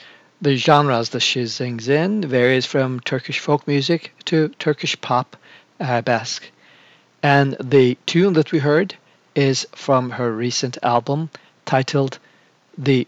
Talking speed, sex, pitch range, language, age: 135 wpm, male, 125-150 Hz, English, 50-69